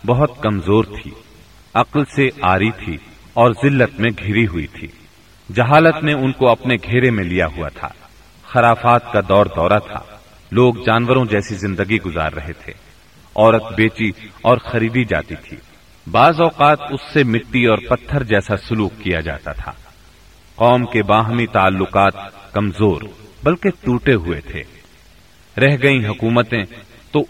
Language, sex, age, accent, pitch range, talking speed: English, male, 40-59, Indian, 95-125 Hz, 135 wpm